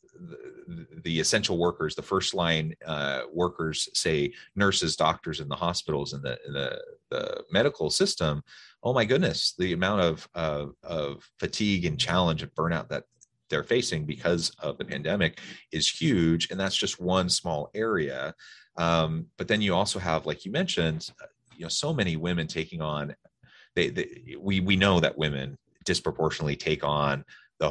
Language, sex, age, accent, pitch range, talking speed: English, male, 30-49, American, 75-100 Hz, 165 wpm